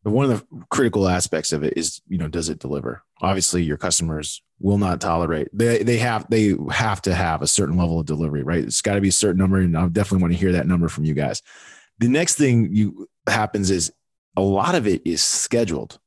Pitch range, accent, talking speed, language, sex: 90-115 Hz, American, 230 wpm, English, male